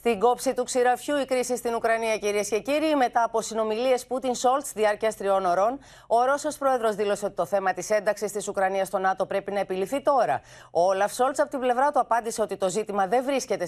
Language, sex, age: Greek, female, 30-49